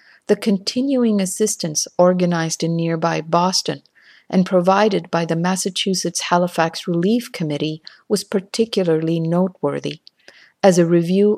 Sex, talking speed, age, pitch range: female, 105 wpm, 50-69, 170-210 Hz